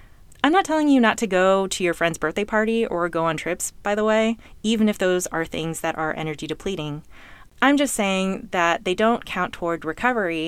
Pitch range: 155-205 Hz